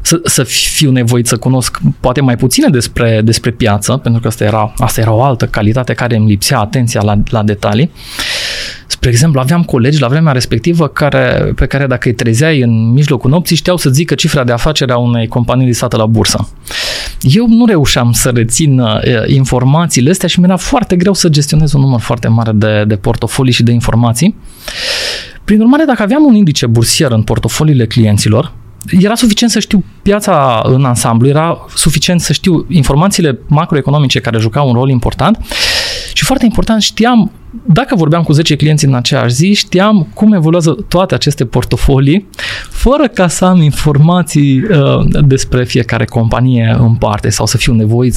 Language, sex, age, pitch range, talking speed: Romanian, male, 20-39, 120-170 Hz, 175 wpm